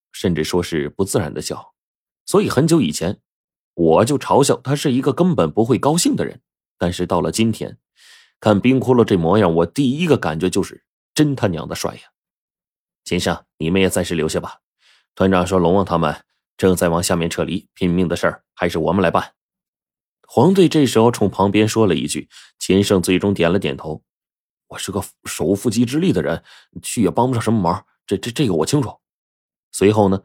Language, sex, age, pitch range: Chinese, male, 30-49, 85-110 Hz